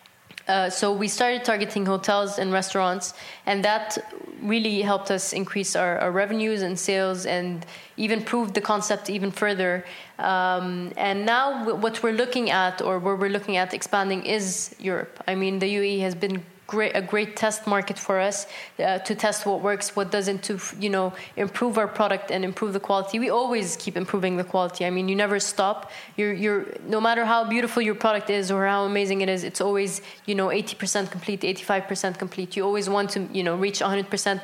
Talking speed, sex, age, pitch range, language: 200 wpm, female, 20-39, 185-210 Hz, English